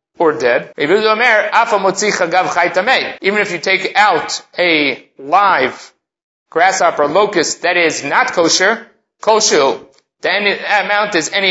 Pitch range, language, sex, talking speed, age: 175-210 Hz, English, male, 105 wpm, 30-49